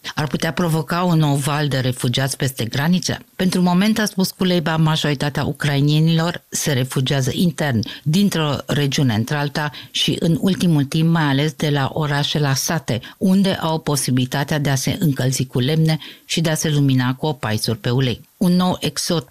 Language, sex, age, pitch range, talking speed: Romanian, female, 50-69, 125-160 Hz, 175 wpm